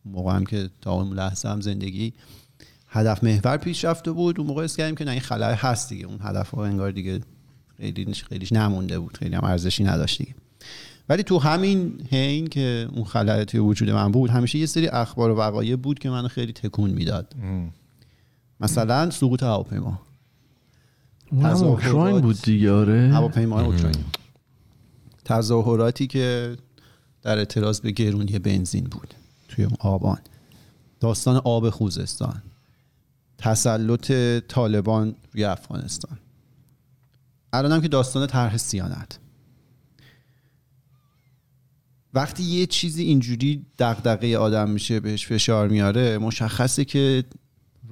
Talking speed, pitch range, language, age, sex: 125 wpm, 105-130 Hz, Persian, 40-59, male